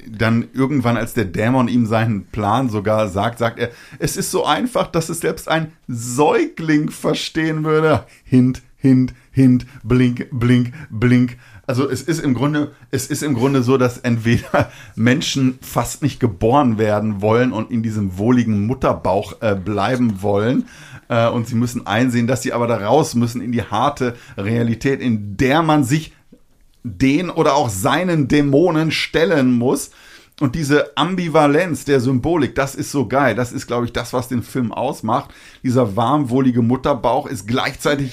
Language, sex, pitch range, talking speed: German, male, 115-145 Hz, 165 wpm